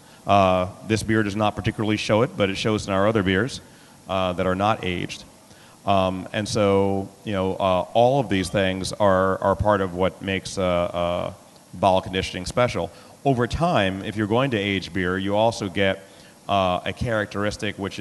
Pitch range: 95-110 Hz